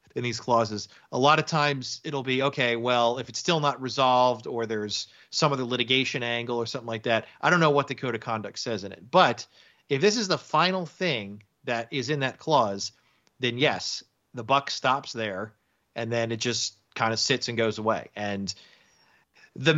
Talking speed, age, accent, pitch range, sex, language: 205 wpm, 30-49, American, 115-145 Hz, male, English